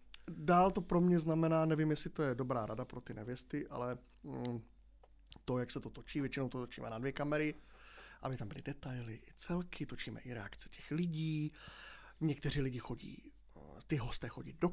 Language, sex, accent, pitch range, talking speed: Czech, male, native, 130-160 Hz, 185 wpm